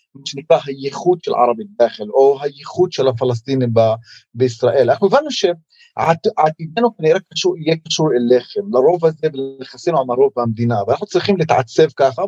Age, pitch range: 30-49, 155-240 Hz